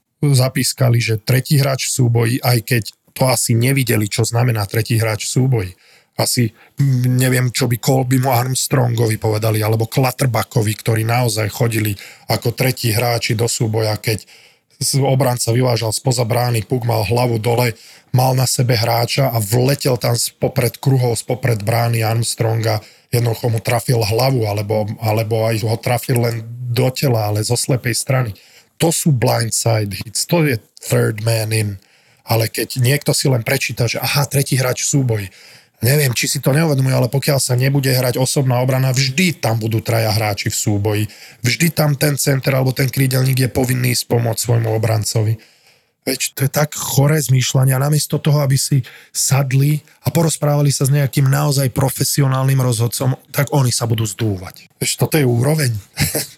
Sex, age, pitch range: male, 20-39, 115-135 Hz